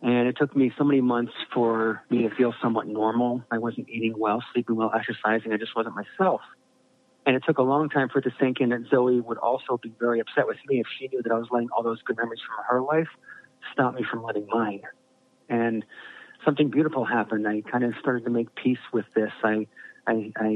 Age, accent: 40-59, American